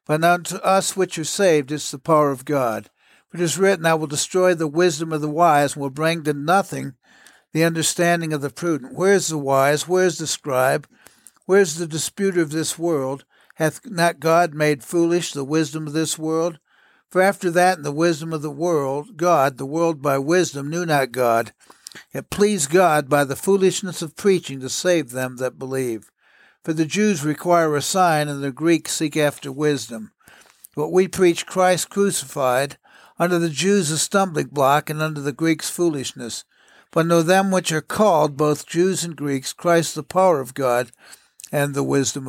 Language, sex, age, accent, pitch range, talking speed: English, male, 60-79, American, 145-175 Hz, 190 wpm